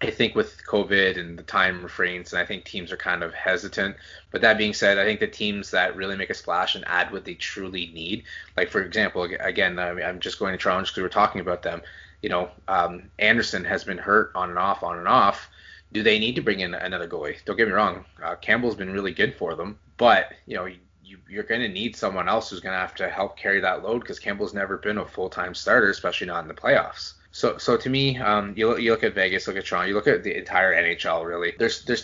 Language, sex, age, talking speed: English, male, 20-39, 260 wpm